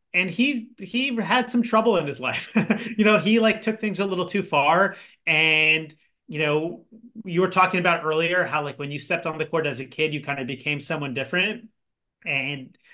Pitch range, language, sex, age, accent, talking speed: 130-180 Hz, English, male, 30-49, American, 210 wpm